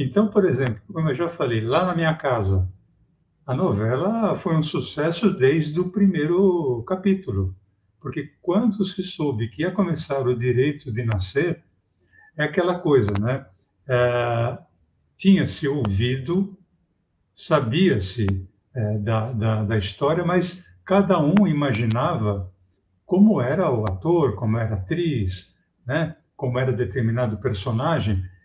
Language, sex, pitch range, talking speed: Portuguese, male, 105-160 Hz, 130 wpm